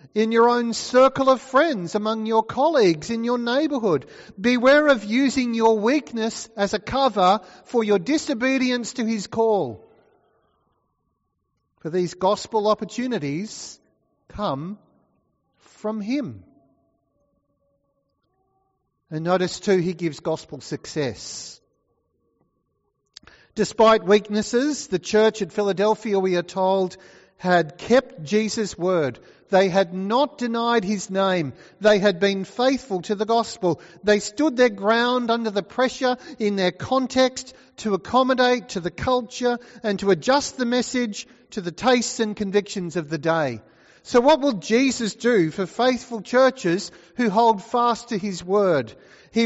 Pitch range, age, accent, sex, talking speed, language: 185-245 Hz, 40-59, Australian, male, 130 wpm, English